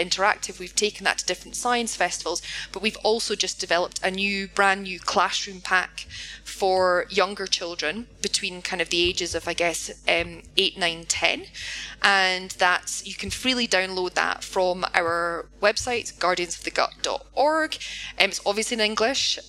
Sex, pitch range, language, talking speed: female, 175-210 Hz, Bulgarian, 170 wpm